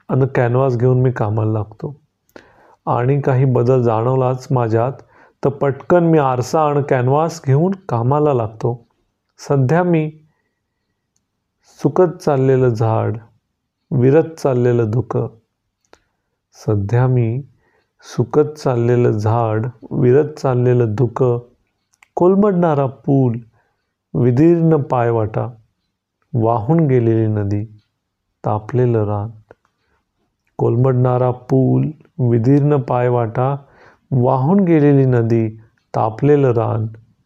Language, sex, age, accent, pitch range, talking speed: Marathi, male, 40-59, native, 115-140 Hz, 75 wpm